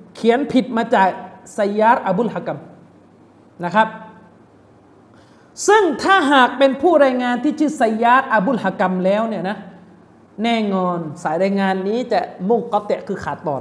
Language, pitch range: Thai, 185-260 Hz